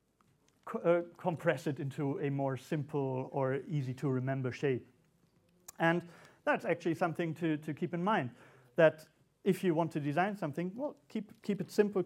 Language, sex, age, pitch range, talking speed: English, male, 40-59, 145-185 Hz, 165 wpm